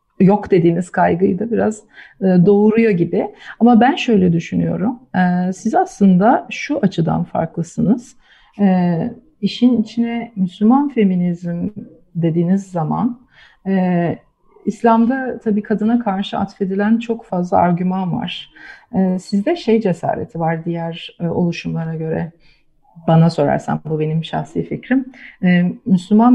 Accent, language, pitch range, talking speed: native, Turkish, 170-220 Hz, 100 wpm